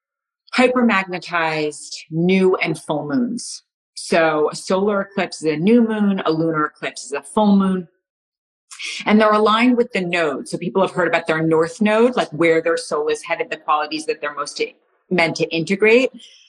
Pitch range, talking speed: 160-230 Hz, 175 wpm